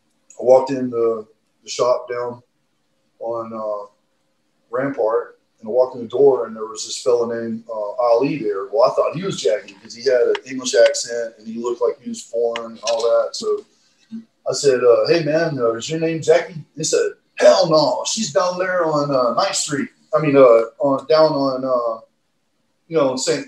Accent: American